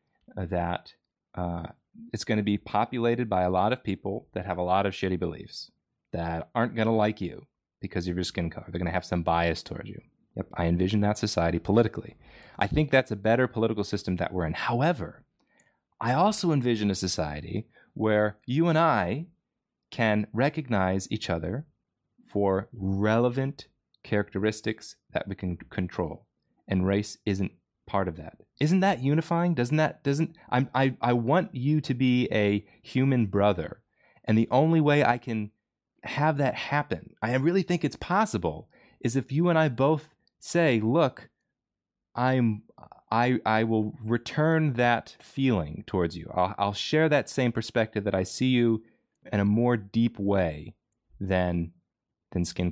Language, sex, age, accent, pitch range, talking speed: English, male, 30-49, American, 95-130 Hz, 165 wpm